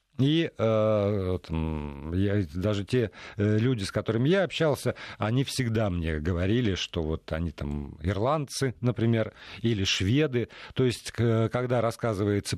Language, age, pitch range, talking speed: Russian, 50-69, 100-135 Hz, 125 wpm